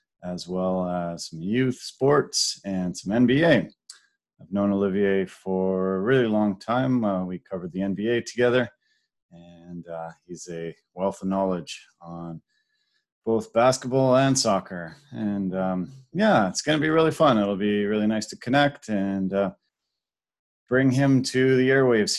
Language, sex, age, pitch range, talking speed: English, male, 30-49, 95-125 Hz, 150 wpm